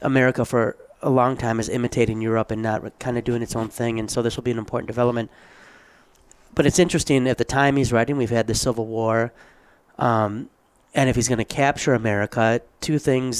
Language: English